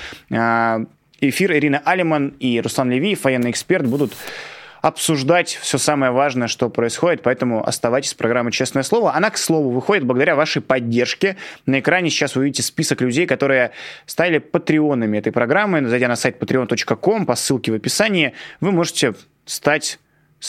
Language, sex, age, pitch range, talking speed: Russian, male, 20-39, 120-155 Hz, 150 wpm